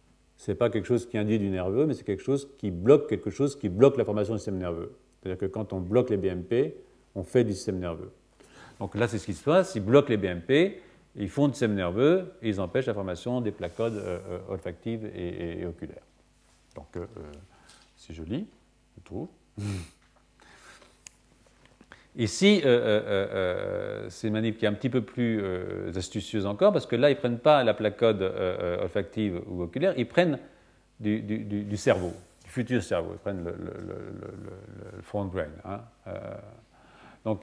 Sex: male